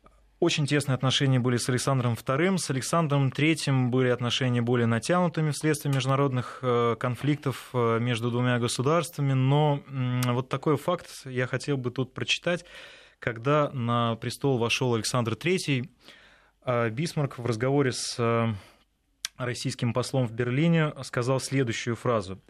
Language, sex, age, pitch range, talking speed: Russian, male, 20-39, 120-140 Hz, 125 wpm